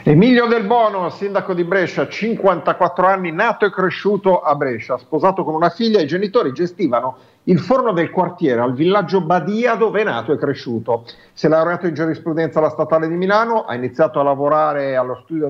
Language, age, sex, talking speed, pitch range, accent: Italian, 50-69, male, 180 wpm, 140-190 Hz, native